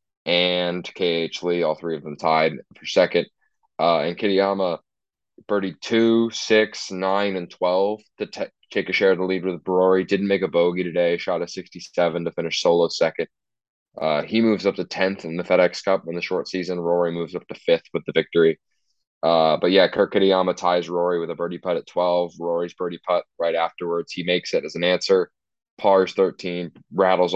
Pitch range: 85-95 Hz